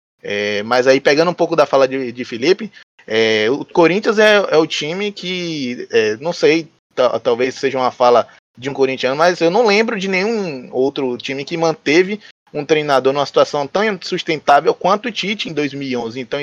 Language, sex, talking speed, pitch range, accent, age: Portuguese, male, 175 wpm, 130-180 Hz, Brazilian, 20-39